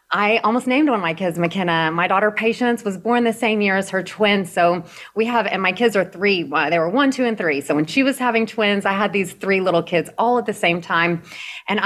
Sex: female